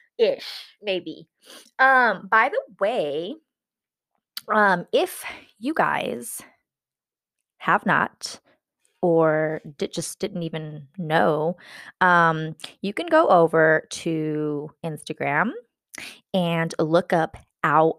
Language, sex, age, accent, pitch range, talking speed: English, female, 20-39, American, 155-195 Hz, 95 wpm